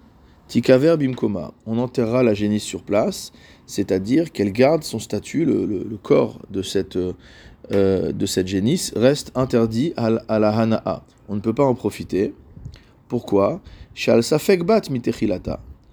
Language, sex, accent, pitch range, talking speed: French, male, French, 100-125 Hz, 135 wpm